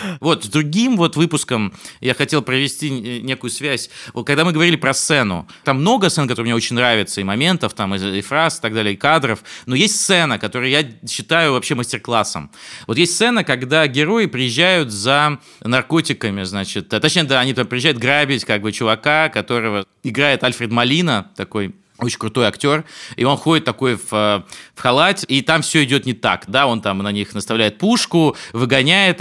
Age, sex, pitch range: 20-39, male, 115-160 Hz